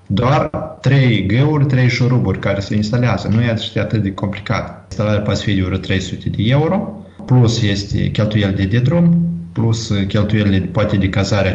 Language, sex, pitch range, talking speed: Romanian, male, 95-120 Hz, 150 wpm